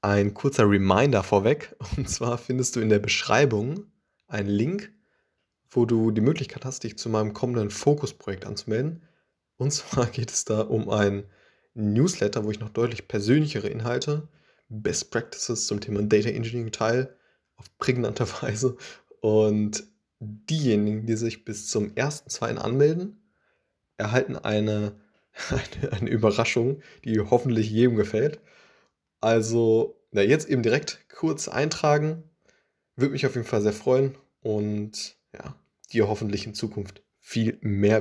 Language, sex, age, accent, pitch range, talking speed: German, male, 20-39, German, 105-125 Hz, 135 wpm